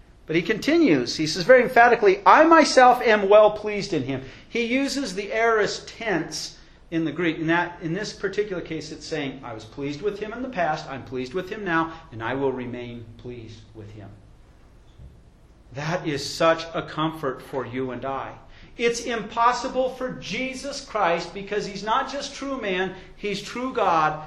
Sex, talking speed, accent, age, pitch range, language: male, 180 wpm, American, 40-59, 135-215 Hz, English